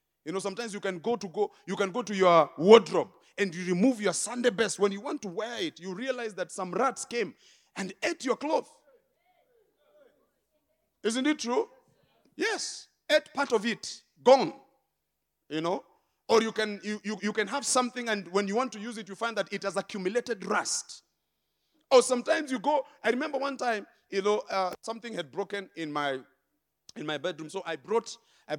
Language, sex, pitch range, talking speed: English, male, 170-235 Hz, 195 wpm